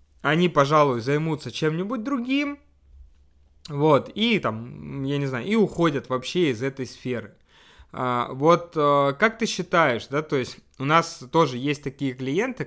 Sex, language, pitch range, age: male, Russian, 120-170 Hz, 20-39